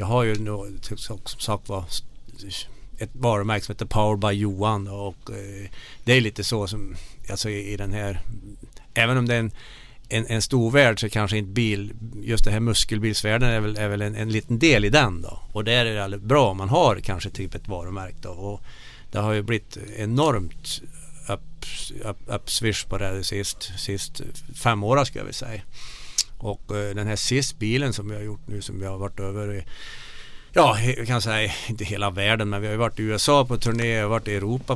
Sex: male